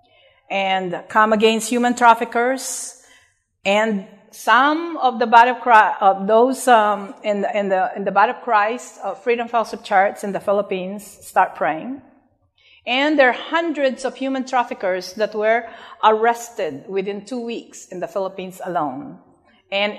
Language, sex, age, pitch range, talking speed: English, female, 50-69, 175-230 Hz, 155 wpm